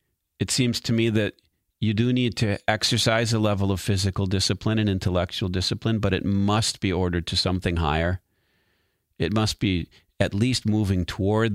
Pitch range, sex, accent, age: 90-110 Hz, male, American, 50-69